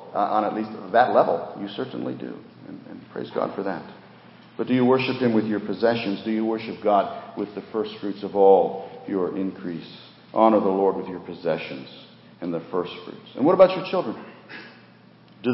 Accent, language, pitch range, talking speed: American, English, 95-110 Hz, 195 wpm